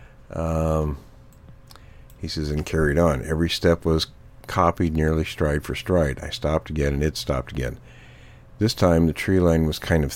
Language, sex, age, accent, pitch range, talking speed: English, male, 50-69, American, 70-85 Hz, 170 wpm